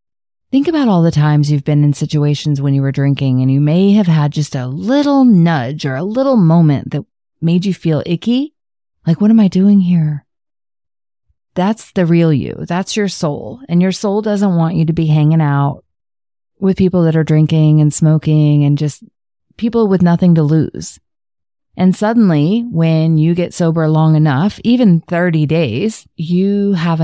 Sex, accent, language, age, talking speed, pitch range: female, American, English, 30-49, 180 wpm, 155-200 Hz